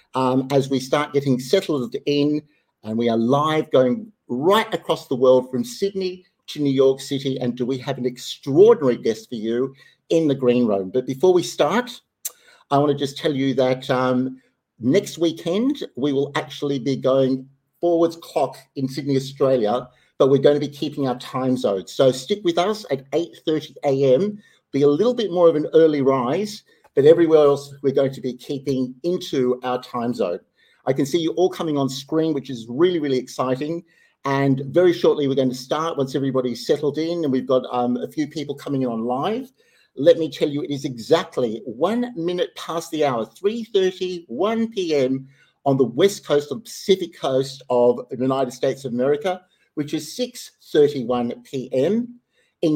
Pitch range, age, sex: 130-170 Hz, 50-69, male